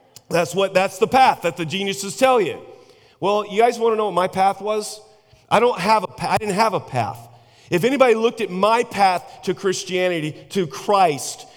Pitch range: 185-235 Hz